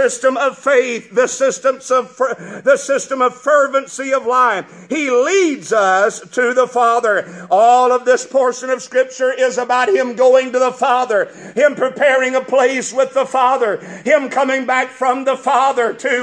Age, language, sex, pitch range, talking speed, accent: 50-69, English, male, 250-280 Hz, 170 wpm, American